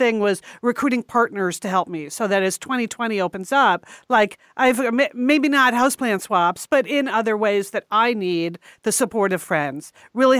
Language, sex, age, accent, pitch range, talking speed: English, female, 50-69, American, 195-255 Hz, 185 wpm